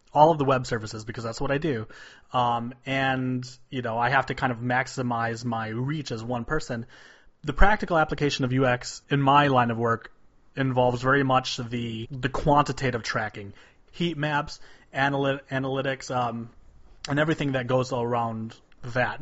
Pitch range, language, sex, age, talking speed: 120-140 Hz, English, male, 30-49, 170 wpm